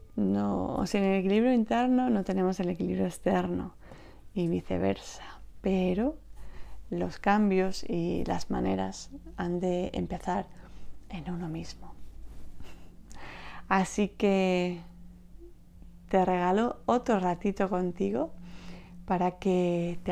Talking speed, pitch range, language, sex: 105 wpm, 175-190 Hz, Spanish, female